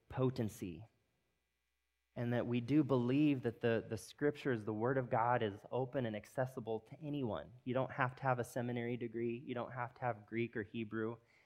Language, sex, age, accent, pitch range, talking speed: English, male, 30-49, American, 105-130 Hz, 190 wpm